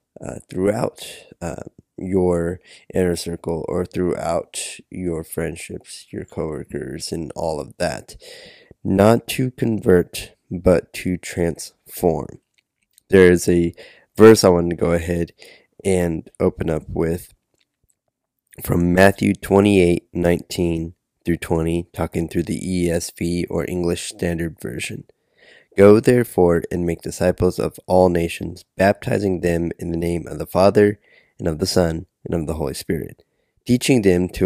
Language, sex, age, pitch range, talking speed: English, male, 20-39, 85-100 Hz, 135 wpm